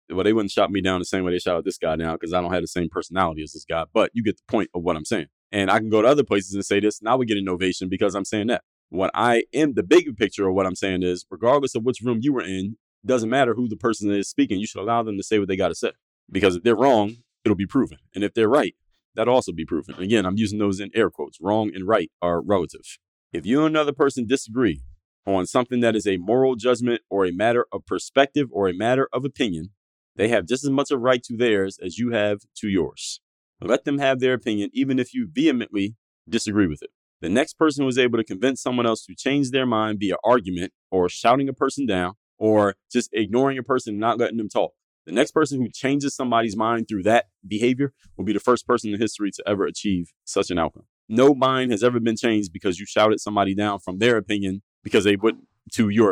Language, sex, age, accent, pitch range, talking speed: English, male, 30-49, American, 95-125 Hz, 250 wpm